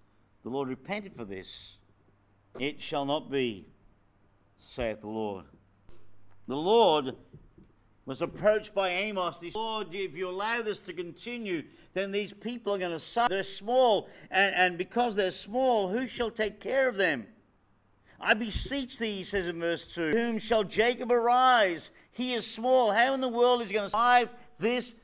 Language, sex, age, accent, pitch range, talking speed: English, male, 50-69, British, 135-215 Hz, 175 wpm